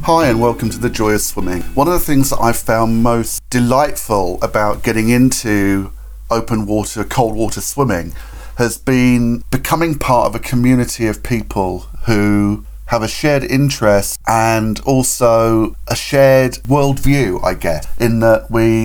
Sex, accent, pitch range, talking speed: male, British, 105-130 Hz, 155 wpm